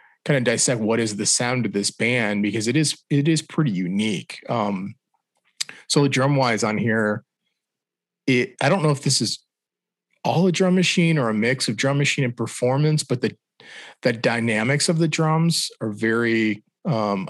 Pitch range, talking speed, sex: 110-145 Hz, 185 wpm, male